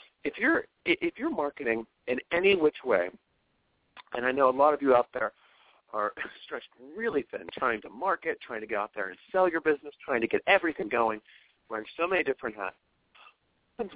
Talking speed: 200 wpm